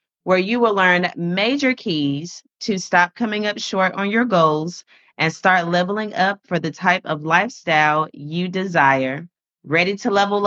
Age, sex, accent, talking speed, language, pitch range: 30-49, female, American, 160 wpm, English, 170-205 Hz